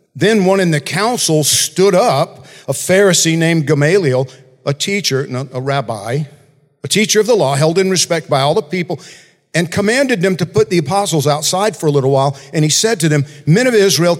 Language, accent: English, American